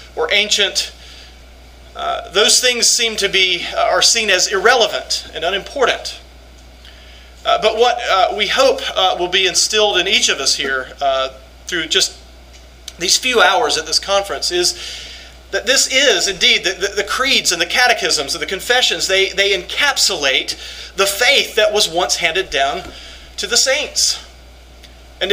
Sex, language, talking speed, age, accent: male, English, 160 wpm, 40-59, American